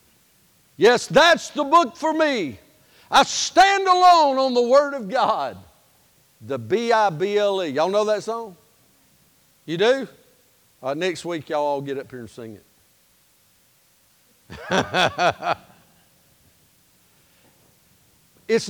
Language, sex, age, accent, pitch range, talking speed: English, male, 50-69, American, 150-230 Hz, 110 wpm